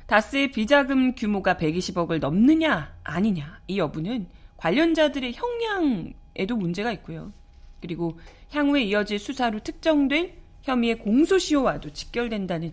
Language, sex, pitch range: Korean, female, 170-240 Hz